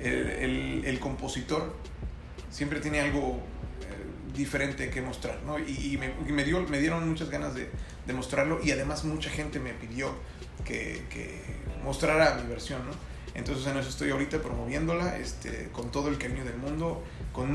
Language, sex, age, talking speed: Spanish, male, 30-49, 170 wpm